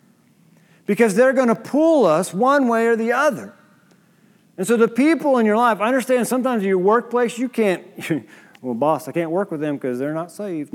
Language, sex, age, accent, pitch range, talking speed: English, male, 40-59, American, 195-250 Hz, 205 wpm